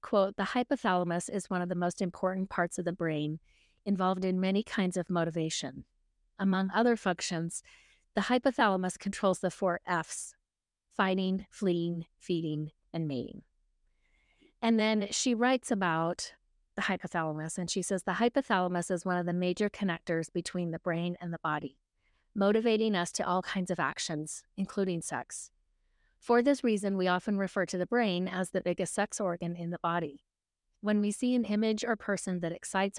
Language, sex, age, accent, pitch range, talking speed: English, female, 30-49, American, 170-210 Hz, 165 wpm